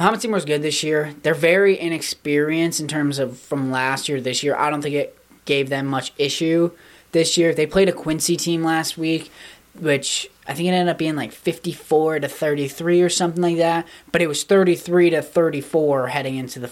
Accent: American